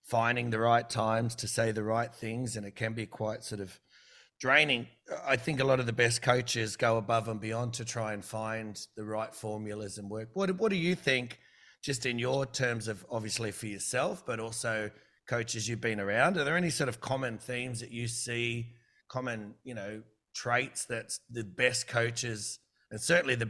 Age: 30-49